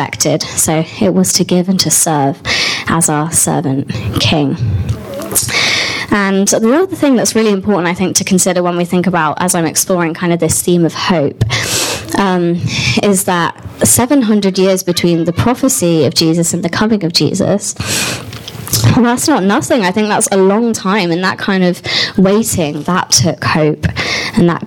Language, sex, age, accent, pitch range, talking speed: English, female, 20-39, British, 155-195 Hz, 170 wpm